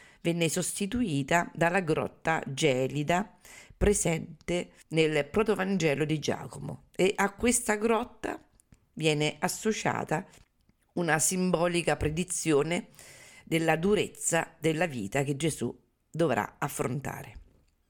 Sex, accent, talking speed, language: female, native, 90 wpm, Italian